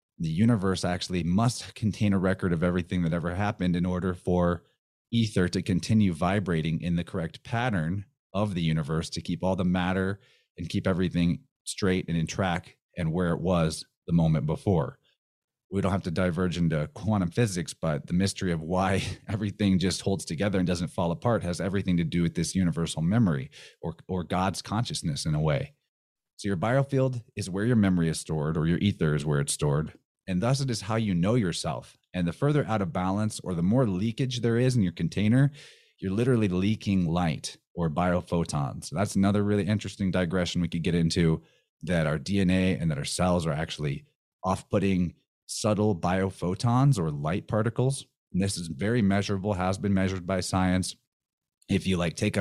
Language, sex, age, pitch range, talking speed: English, male, 30-49, 85-105 Hz, 190 wpm